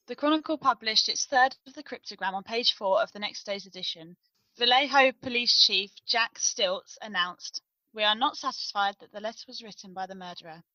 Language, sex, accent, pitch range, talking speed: English, female, British, 195-255 Hz, 190 wpm